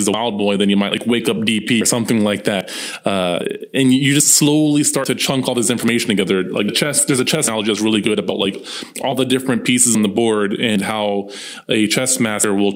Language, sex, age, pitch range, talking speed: English, male, 20-39, 105-125 Hz, 235 wpm